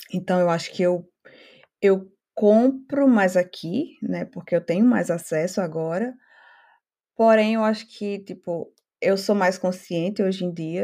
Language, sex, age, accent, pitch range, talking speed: Portuguese, female, 20-39, Brazilian, 185-265 Hz, 155 wpm